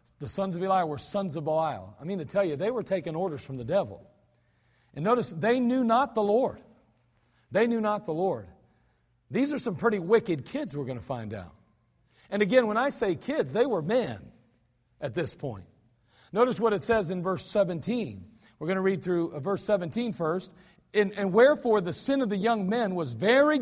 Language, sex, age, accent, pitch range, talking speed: English, male, 50-69, American, 150-230 Hz, 205 wpm